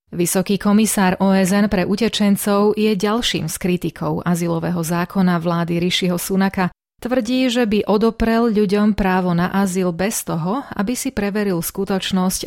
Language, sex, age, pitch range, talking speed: Slovak, female, 30-49, 175-210 Hz, 135 wpm